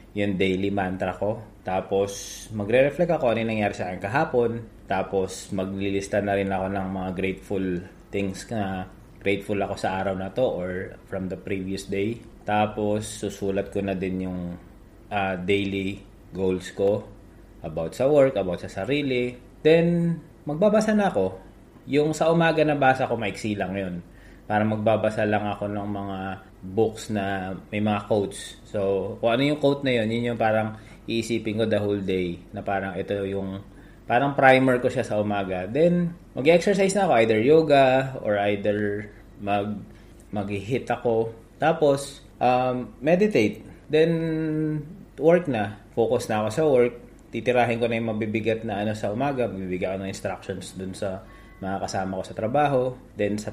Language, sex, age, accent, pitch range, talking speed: Filipino, male, 20-39, native, 95-125 Hz, 155 wpm